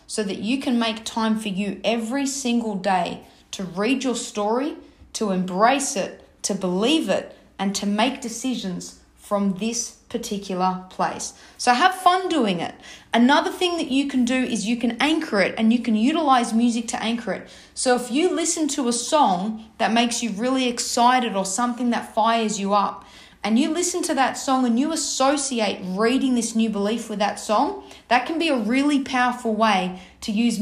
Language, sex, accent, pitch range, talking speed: English, female, Australian, 210-255 Hz, 190 wpm